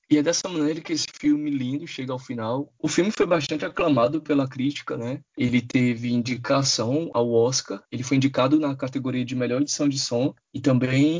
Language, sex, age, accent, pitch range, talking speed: Portuguese, male, 20-39, Brazilian, 130-155 Hz, 195 wpm